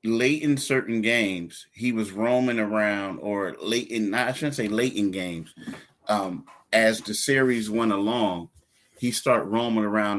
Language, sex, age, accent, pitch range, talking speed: English, male, 30-49, American, 105-120 Hz, 160 wpm